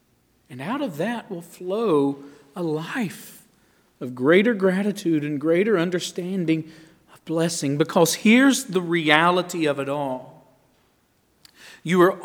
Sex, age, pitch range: male, 40-59, 150-215 Hz